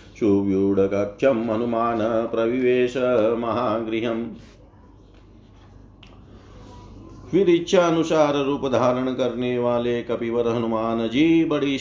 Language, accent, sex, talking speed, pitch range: Hindi, native, male, 65 wpm, 110-140 Hz